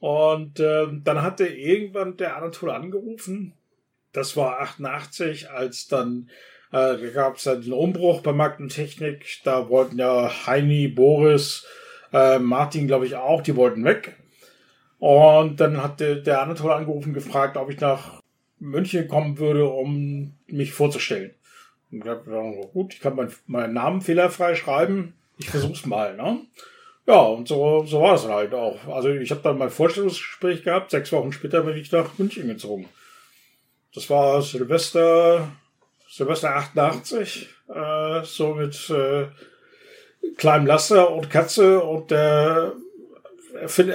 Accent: German